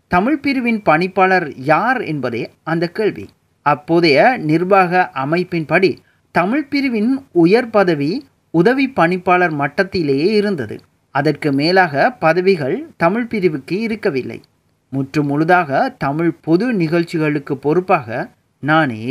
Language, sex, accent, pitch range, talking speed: Tamil, male, native, 155-200 Hz, 90 wpm